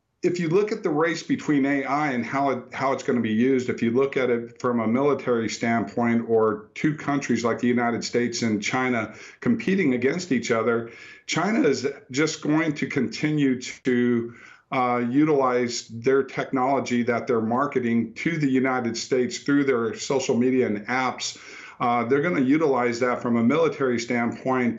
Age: 50-69